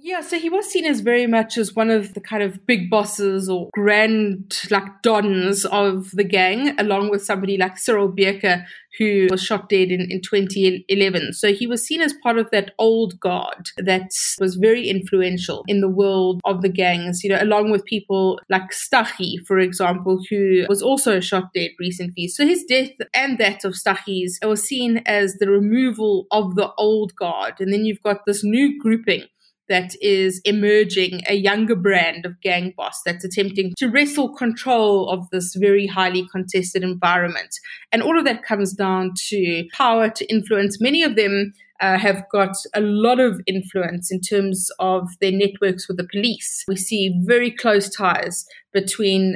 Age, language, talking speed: 30-49, English, 180 wpm